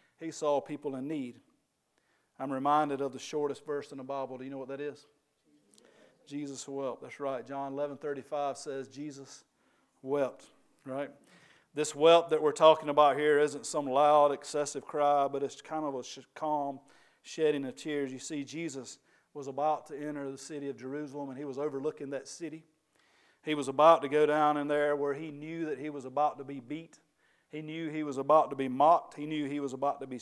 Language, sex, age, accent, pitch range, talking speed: English, male, 40-59, American, 135-150 Hz, 200 wpm